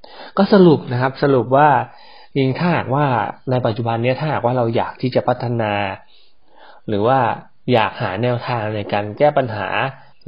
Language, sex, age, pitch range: Thai, male, 20-39, 120-165 Hz